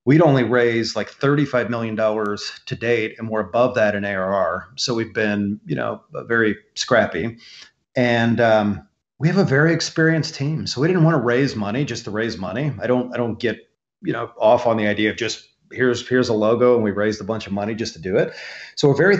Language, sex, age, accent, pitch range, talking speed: English, male, 40-59, American, 105-125 Hz, 220 wpm